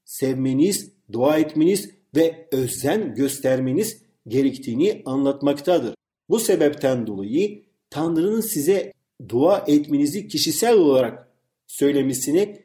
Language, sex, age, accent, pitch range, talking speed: Turkish, male, 50-69, native, 140-210 Hz, 85 wpm